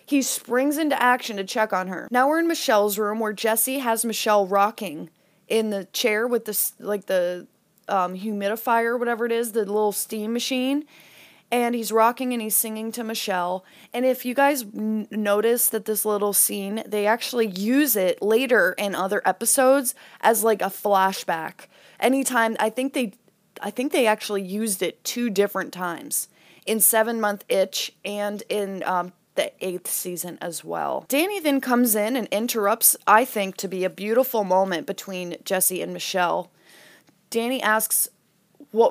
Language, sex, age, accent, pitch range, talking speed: English, female, 20-39, American, 200-250 Hz, 165 wpm